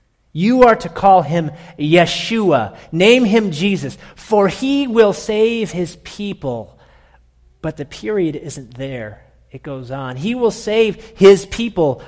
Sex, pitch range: male, 105-160 Hz